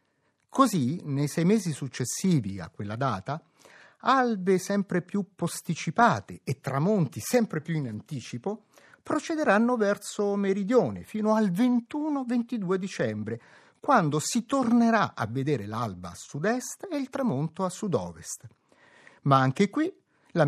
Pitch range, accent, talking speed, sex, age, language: 130-215 Hz, native, 125 wpm, male, 50-69, Italian